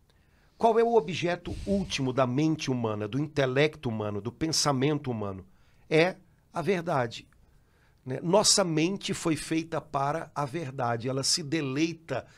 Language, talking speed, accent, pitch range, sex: Portuguese, 135 wpm, Brazilian, 135-175 Hz, male